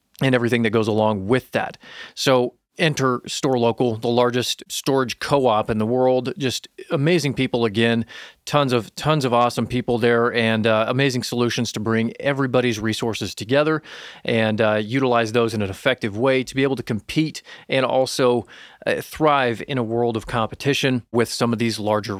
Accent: American